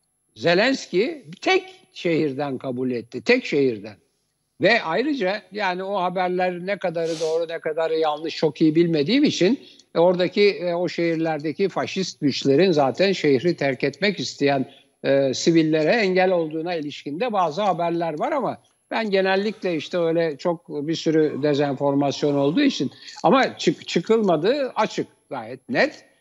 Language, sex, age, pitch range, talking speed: Turkish, male, 60-79, 145-200 Hz, 130 wpm